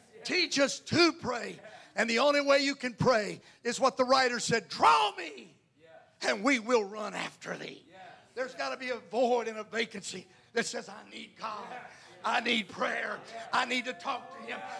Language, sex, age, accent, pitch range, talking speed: English, male, 50-69, American, 150-235 Hz, 190 wpm